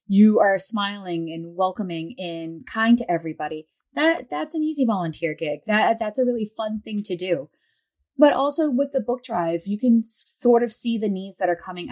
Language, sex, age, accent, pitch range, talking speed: English, female, 30-49, American, 175-245 Hz, 195 wpm